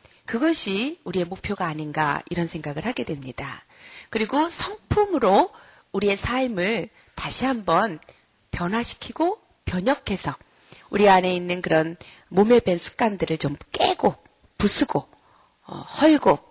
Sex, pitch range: female, 170-240 Hz